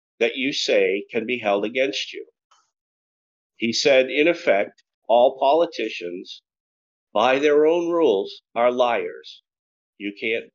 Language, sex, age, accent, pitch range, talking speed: English, male, 50-69, American, 100-135 Hz, 125 wpm